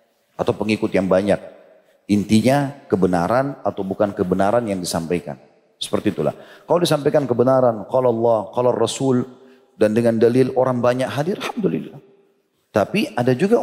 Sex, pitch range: male, 105-130 Hz